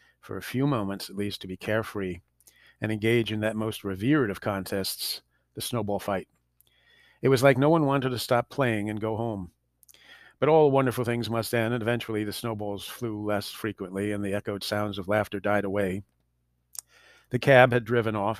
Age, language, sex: 40-59, English, male